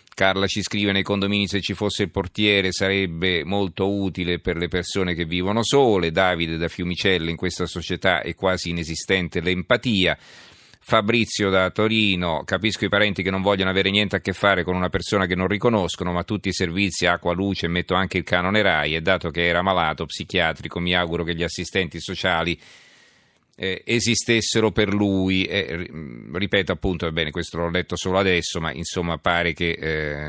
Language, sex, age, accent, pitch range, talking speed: Italian, male, 40-59, native, 85-100 Hz, 180 wpm